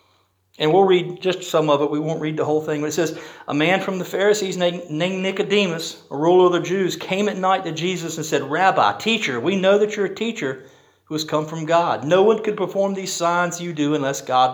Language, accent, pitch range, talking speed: English, American, 155-205 Hz, 240 wpm